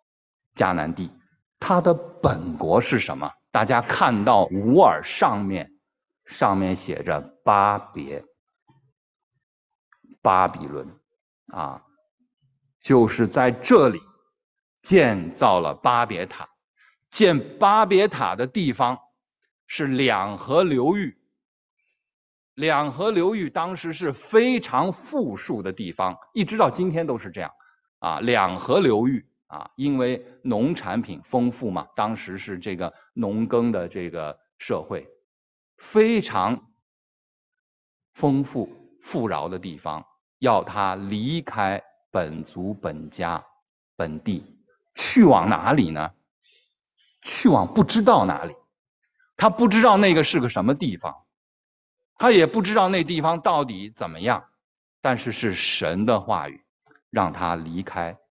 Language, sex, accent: English, male, Chinese